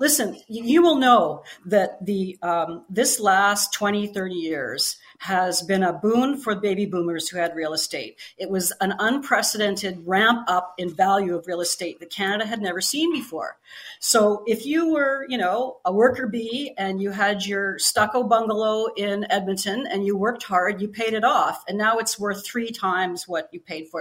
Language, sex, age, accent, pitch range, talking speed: English, female, 40-59, American, 185-240 Hz, 185 wpm